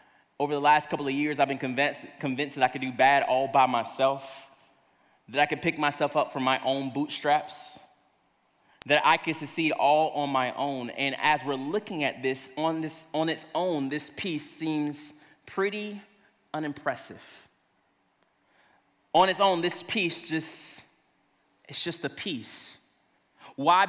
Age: 20-39